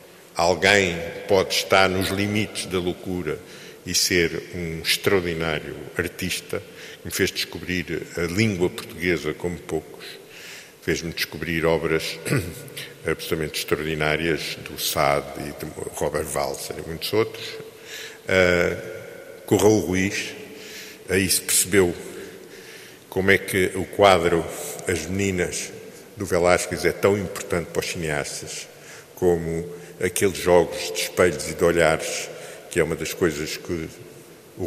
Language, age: Portuguese, 50-69